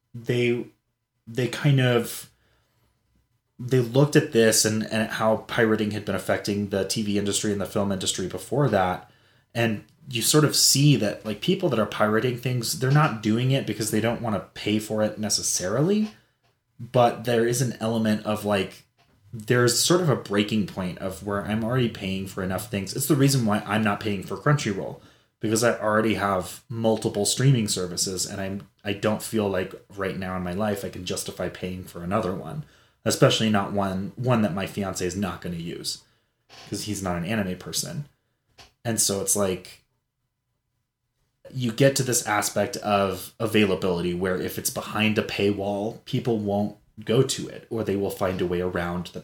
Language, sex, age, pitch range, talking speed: English, male, 20-39, 100-120 Hz, 190 wpm